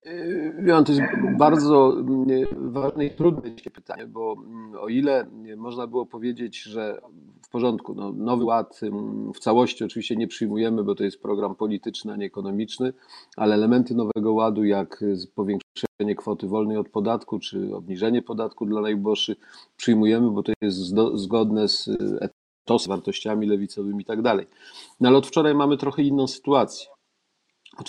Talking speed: 145 wpm